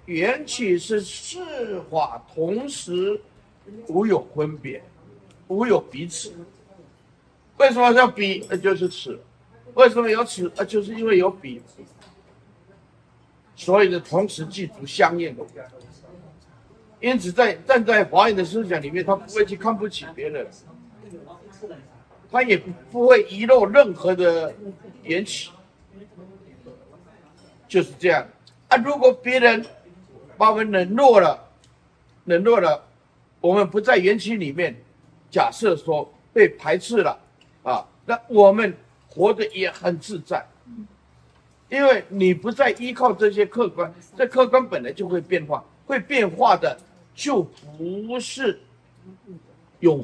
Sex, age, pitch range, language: male, 60-79, 170-235 Hz, Chinese